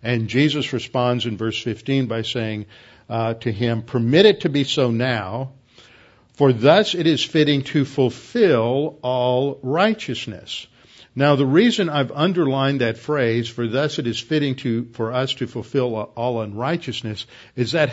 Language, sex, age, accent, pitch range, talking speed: English, male, 50-69, American, 115-135 Hz, 155 wpm